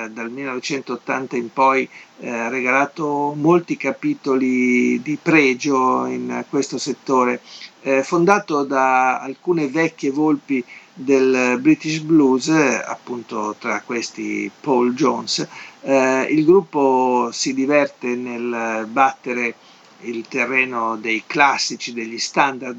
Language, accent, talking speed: Italian, native, 105 wpm